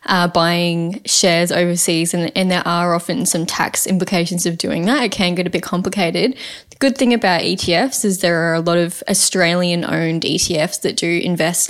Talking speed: 195 wpm